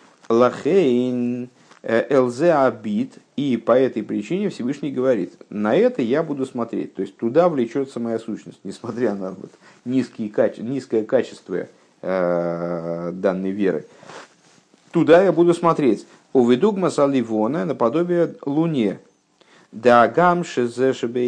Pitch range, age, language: 105-130 Hz, 50-69, Russian